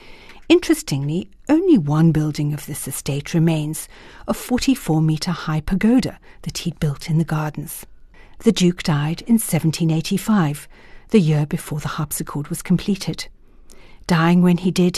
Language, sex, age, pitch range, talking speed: English, female, 60-79, 155-190 Hz, 135 wpm